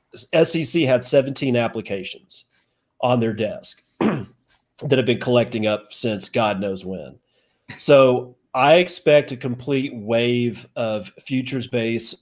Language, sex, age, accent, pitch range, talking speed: English, male, 40-59, American, 110-130 Hz, 120 wpm